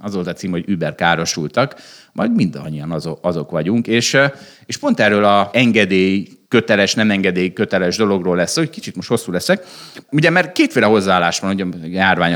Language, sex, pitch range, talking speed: Hungarian, male, 95-125 Hz, 165 wpm